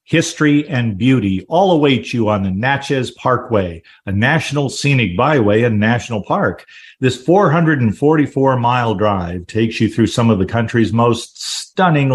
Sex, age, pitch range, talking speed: male, 50-69, 100-140 Hz, 145 wpm